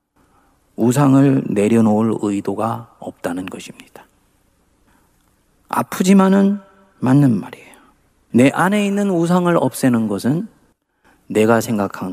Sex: male